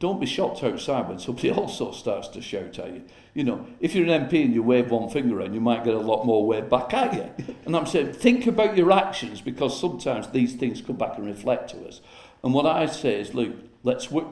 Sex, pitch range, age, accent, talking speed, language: male, 115-155 Hz, 50-69, British, 245 wpm, English